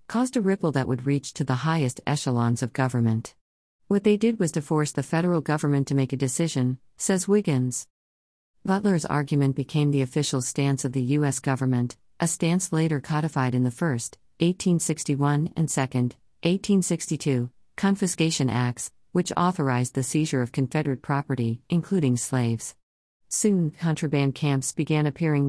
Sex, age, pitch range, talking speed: female, 50-69, 130-165 Hz, 150 wpm